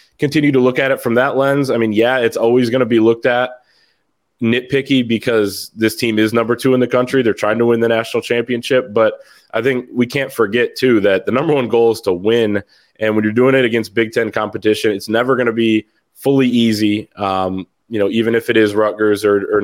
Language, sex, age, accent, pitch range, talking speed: English, male, 20-39, American, 105-130 Hz, 230 wpm